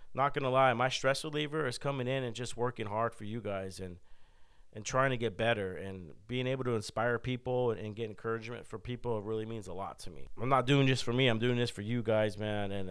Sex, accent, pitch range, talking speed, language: male, American, 100-125 Hz, 255 wpm, English